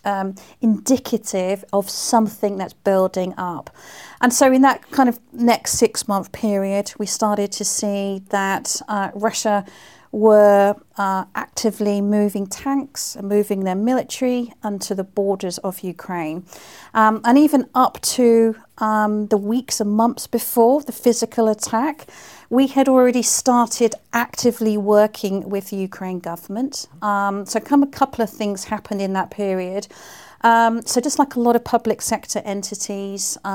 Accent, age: British, 40-59